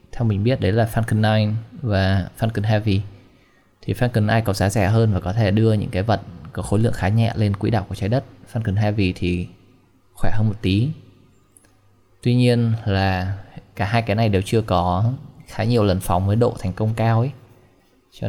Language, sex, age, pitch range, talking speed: Vietnamese, male, 20-39, 95-115 Hz, 205 wpm